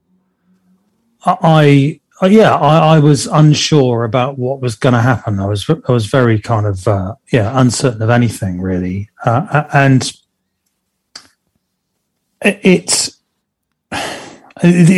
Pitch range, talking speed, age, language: 115-145 Hz, 115 wpm, 40-59, English